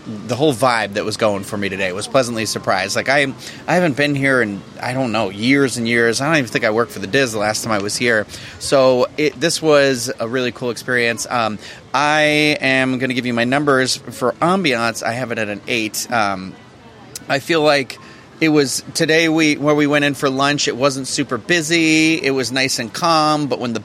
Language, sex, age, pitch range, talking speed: English, male, 30-49, 115-150 Hz, 230 wpm